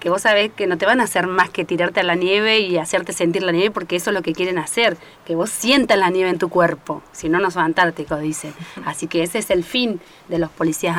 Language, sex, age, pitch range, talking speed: Spanish, female, 30-49, 165-200 Hz, 275 wpm